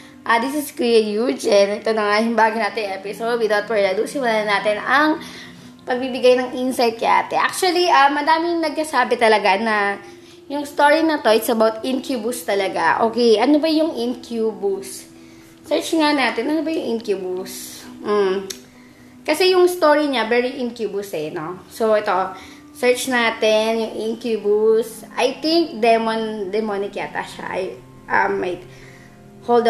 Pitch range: 205-275 Hz